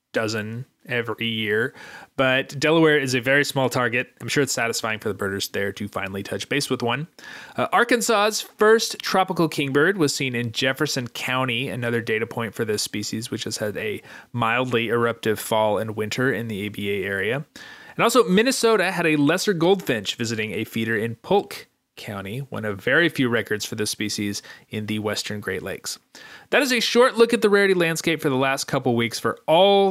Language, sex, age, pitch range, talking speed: English, male, 30-49, 115-150 Hz, 190 wpm